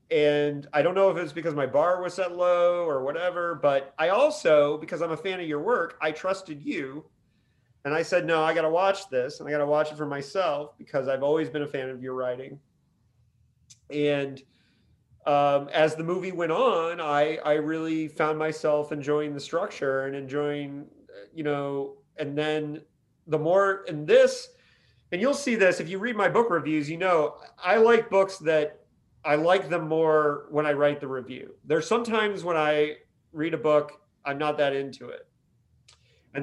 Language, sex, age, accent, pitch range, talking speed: English, male, 30-49, American, 135-170 Hz, 190 wpm